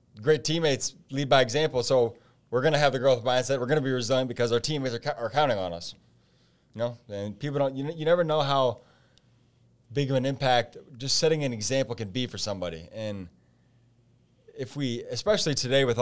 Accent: American